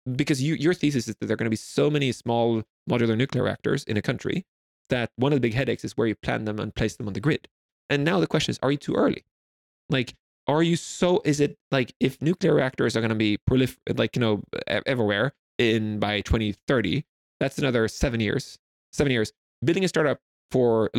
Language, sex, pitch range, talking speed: English, male, 110-140 Hz, 225 wpm